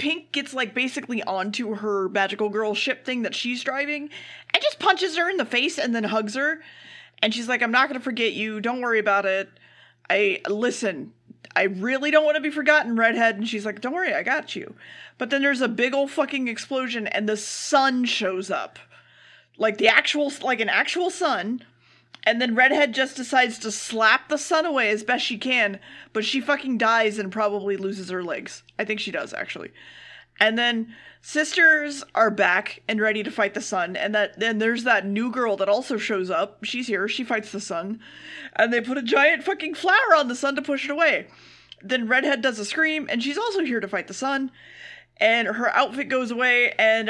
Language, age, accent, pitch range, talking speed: English, 30-49, American, 215-280 Hz, 210 wpm